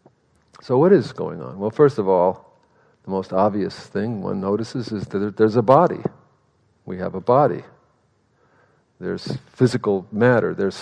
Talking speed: 155 wpm